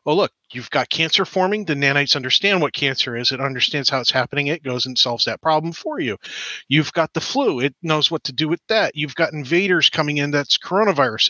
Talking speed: 230 wpm